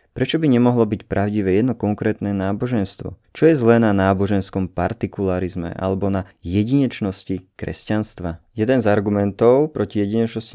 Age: 20-39